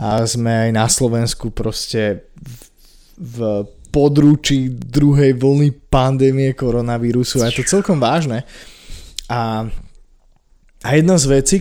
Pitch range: 115-145 Hz